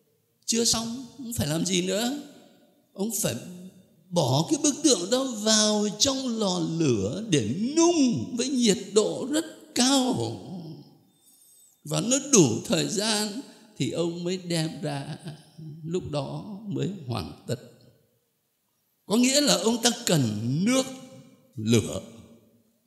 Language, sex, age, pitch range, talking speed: Vietnamese, male, 60-79, 150-245 Hz, 125 wpm